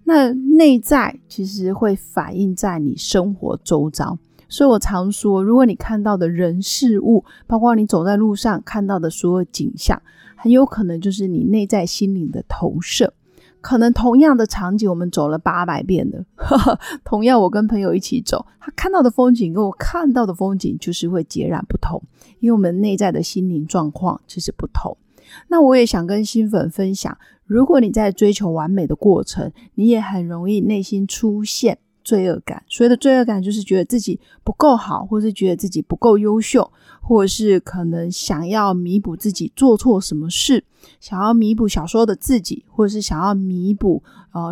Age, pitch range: 30-49, 180-225 Hz